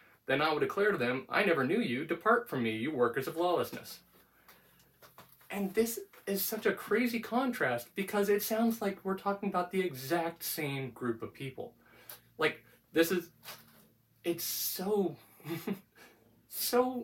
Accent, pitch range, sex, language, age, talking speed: American, 170-230 Hz, male, English, 30-49, 150 wpm